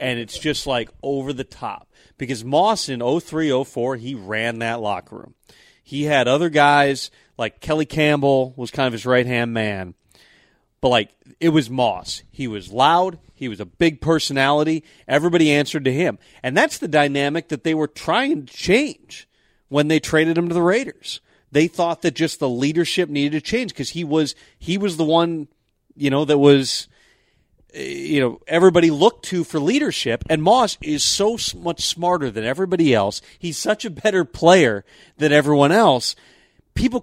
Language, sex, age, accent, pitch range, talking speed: English, male, 30-49, American, 140-185 Hz, 180 wpm